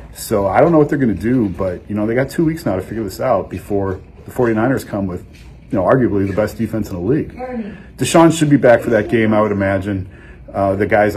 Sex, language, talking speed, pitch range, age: male, English, 260 wpm, 100-115 Hz, 40-59